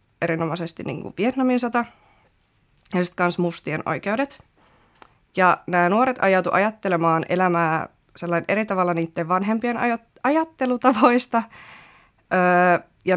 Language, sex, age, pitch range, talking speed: Finnish, female, 30-49, 165-210 Hz, 100 wpm